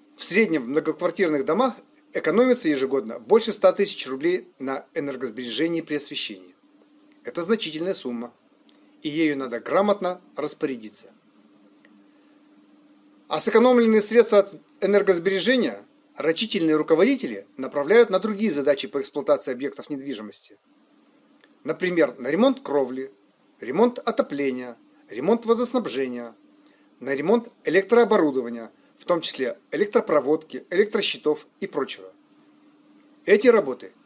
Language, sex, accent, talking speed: Russian, male, native, 100 wpm